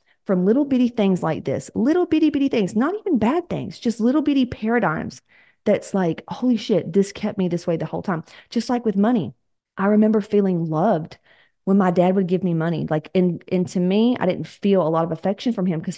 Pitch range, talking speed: 165-205 Hz, 225 wpm